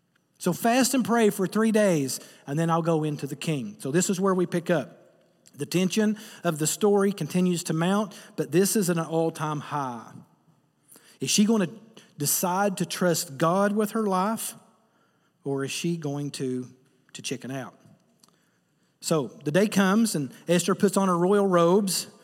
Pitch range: 140-185 Hz